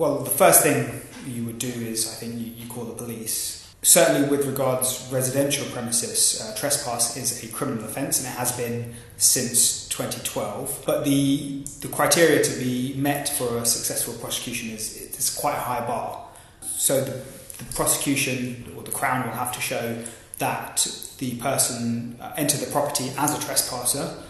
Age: 20-39